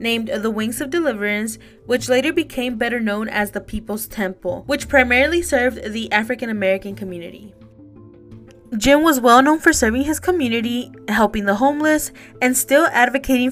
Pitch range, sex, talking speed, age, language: 200-260 Hz, female, 145 wpm, 20-39, English